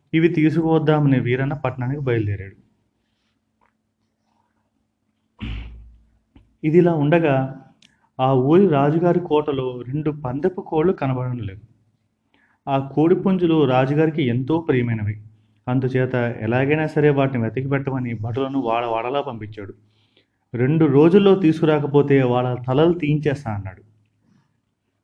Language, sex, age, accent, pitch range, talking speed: Telugu, male, 30-49, native, 115-150 Hz, 90 wpm